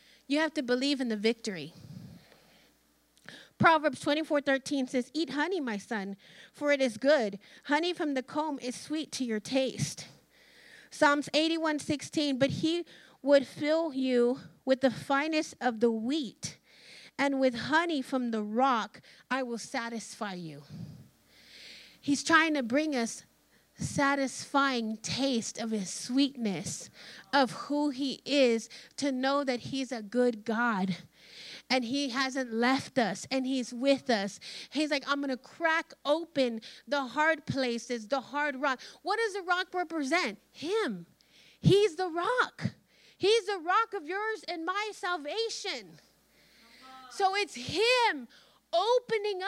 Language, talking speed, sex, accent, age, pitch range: English, 140 wpm, female, American, 30-49, 240-315 Hz